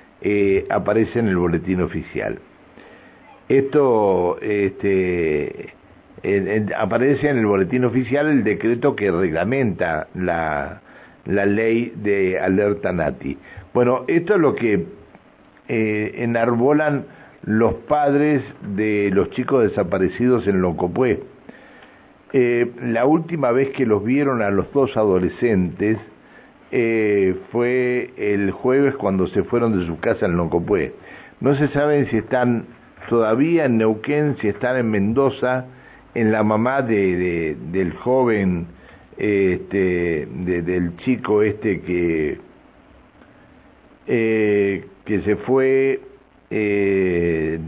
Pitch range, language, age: 95-125 Hz, Spanish, 60-79